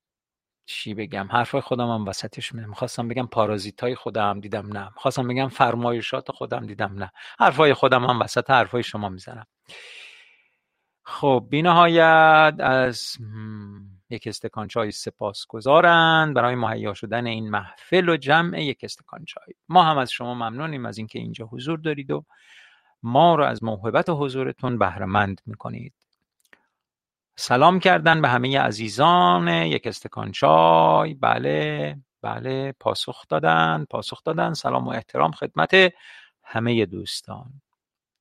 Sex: male